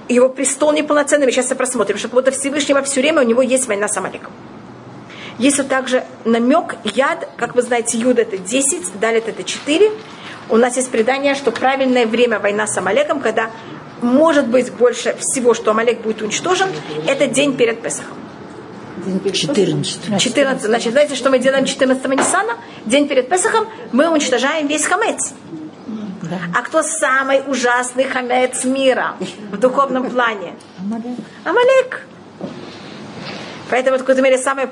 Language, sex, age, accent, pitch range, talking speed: Russian, female, 40-59, native, 230-275 Hz, 145 wpm